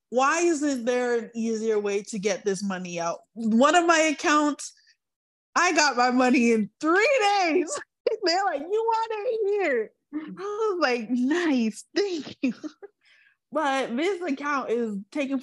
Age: 20-39